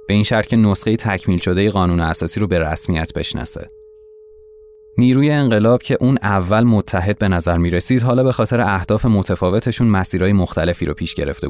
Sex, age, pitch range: male, 20-39, 90-120 Hz